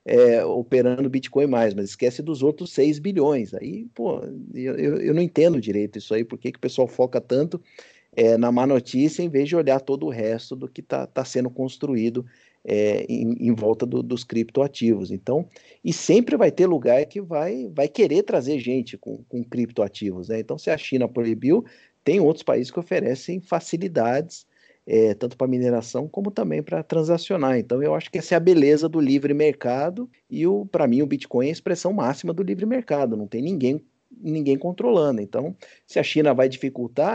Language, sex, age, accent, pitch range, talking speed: Portuguese, male, 50-69, Brazilian, 120-165 Hz, 180 wpm